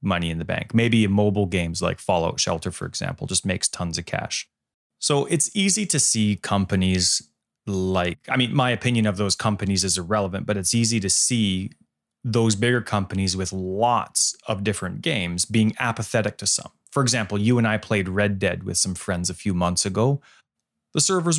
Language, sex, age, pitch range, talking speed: English, male, 30-49, 95-140 Hz, 190 wpm